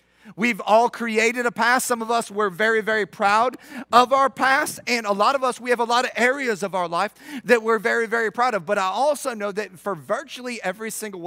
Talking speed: 235 wpm